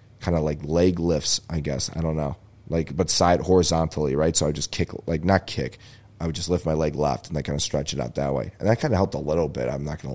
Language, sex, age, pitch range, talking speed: English, male, 20-39, 80-105 Hz, 295 wpm